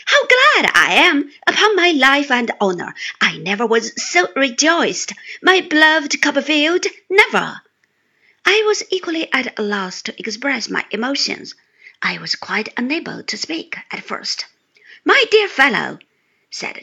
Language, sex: Chinese, female